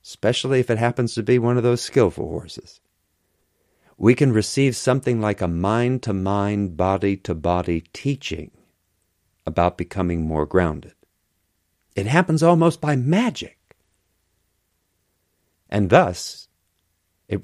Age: 50-69